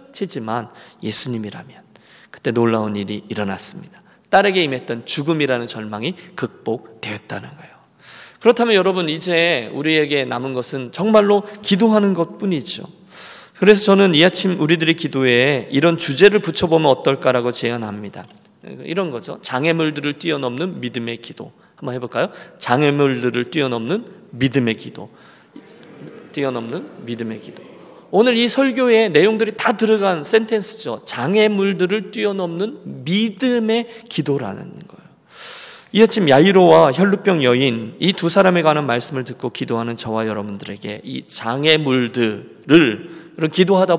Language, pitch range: Korean, 130-195 Hz